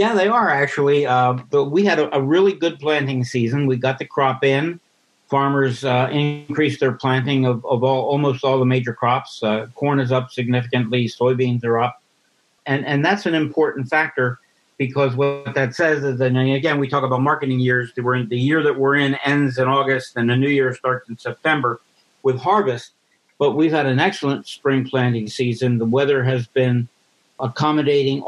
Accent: American